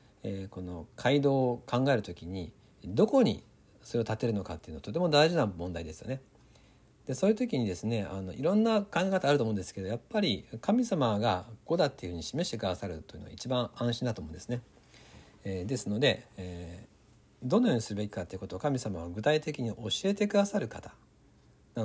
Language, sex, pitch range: Japanese, male, 95-140 Hz